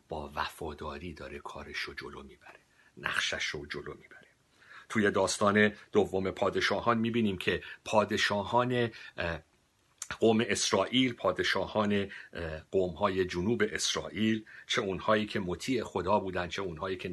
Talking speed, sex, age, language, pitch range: 115 wpm, male, 60-79, Persian, 80-120 Hz